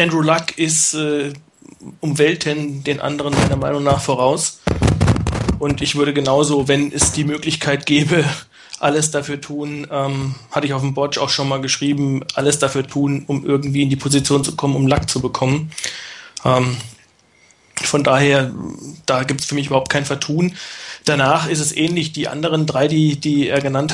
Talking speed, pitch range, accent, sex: 175 wpm, 140-155 Hz, German, male